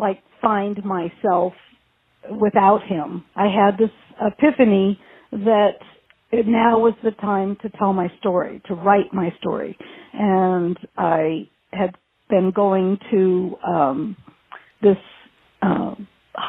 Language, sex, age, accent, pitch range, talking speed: English, female, 50-69, American, 185-210 Hz, 115 wpm